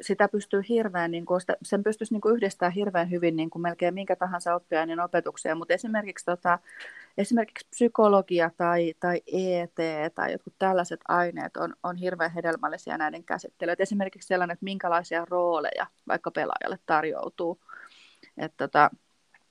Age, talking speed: 30-49, 140 wpm